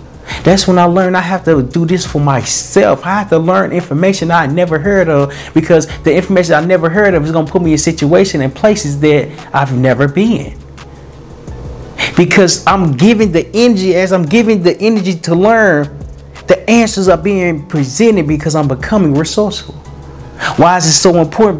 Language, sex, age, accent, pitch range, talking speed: English, male, 30-49, American, 145-200 Hz, 185 wpm